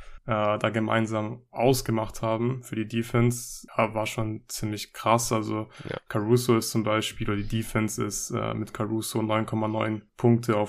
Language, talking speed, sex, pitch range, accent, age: German, 140 wpm, male, 105-115 Hz, German, 10-29